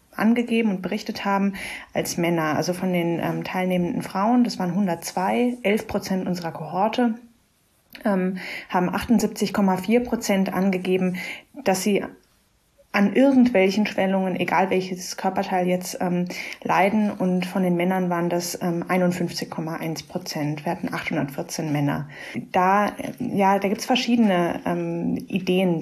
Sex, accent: female, German